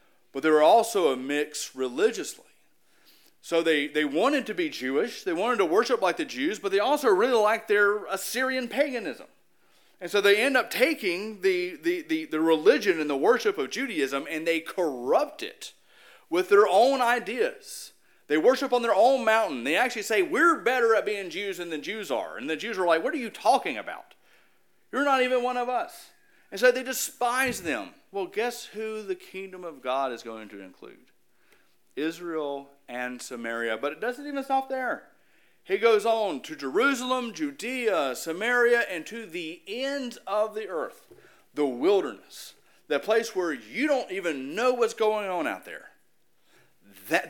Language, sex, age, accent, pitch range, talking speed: English, male, 40-59, American, 185-305 Hz, 180 wpm